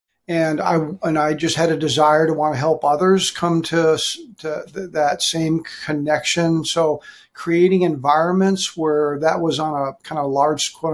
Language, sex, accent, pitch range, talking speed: English, male, American, 150-165 Hz, 175 wpm